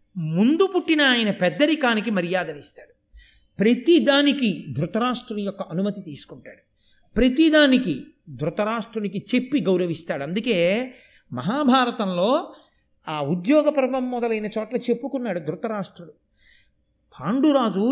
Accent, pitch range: native, 195-270 Hz